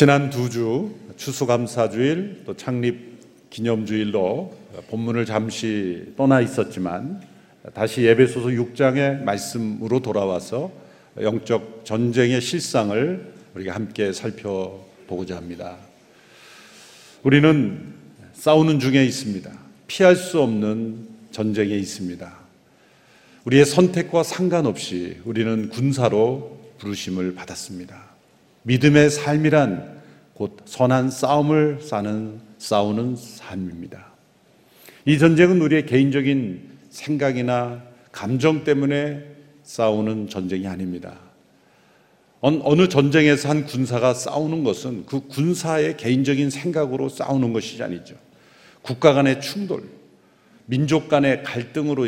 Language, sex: Korean, male